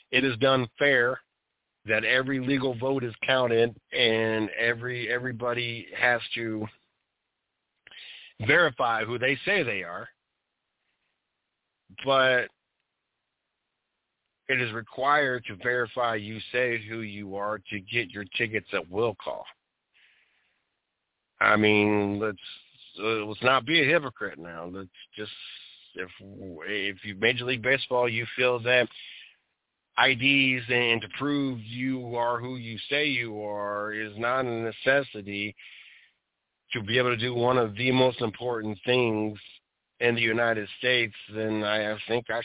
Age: 50-69